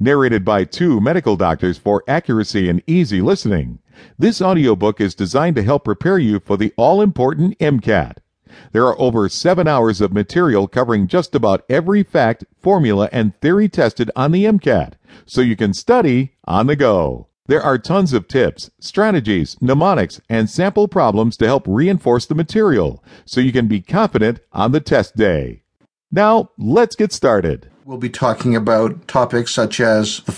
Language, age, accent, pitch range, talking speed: English, 50-69, American, 110-145 Hz, 165 wpm